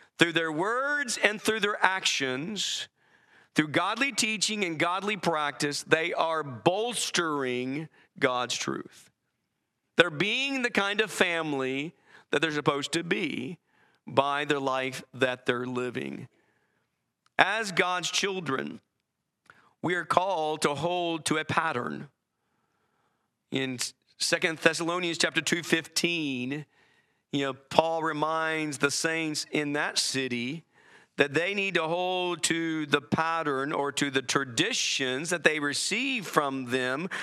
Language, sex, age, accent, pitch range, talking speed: English, male, 40-59, American, 145-190 Hz, 125 wpm